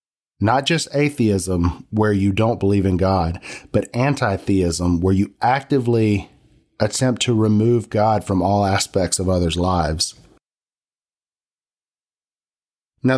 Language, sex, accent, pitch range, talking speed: English, male, American, 95-130 Hz, 115 wpm